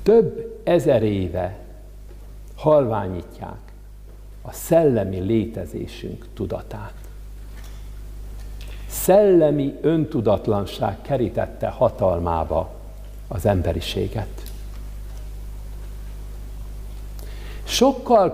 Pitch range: 100-150 Hz